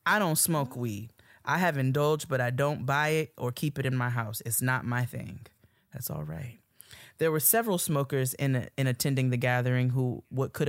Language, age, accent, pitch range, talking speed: English, 20-39, American, 120-140 Hz, 215 wpm